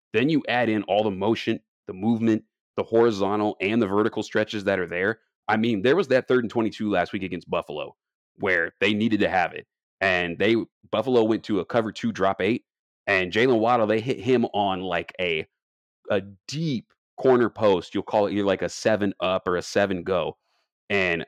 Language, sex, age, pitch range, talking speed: English, male, 30-49, 90-110 Hz, 205 wpm